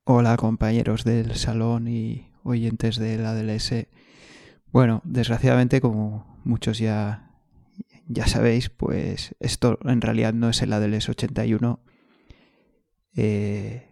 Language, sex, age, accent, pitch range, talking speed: Spanish, male, 20-39, Spanish, 110-120 Hz, 110 wpm